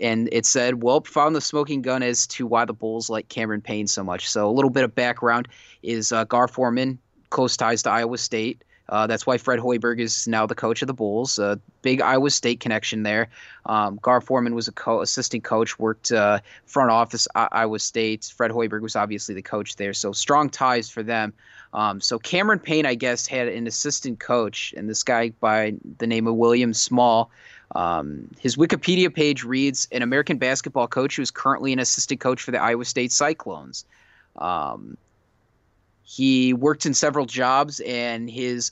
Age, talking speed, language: 20-39, 195 wpm, English